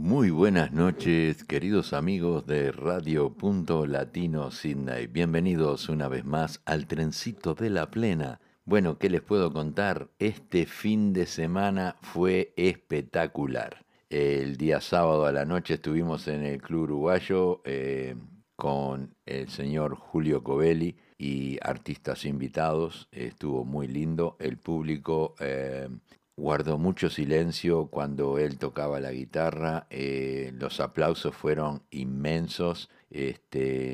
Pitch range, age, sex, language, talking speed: 70-85 Hz, 60-79, male, Spanish, 125 wpm